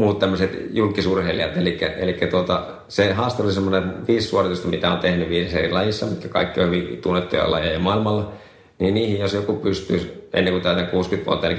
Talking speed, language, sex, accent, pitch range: 165 wpm, Finnish, male, native, 85-95 Hz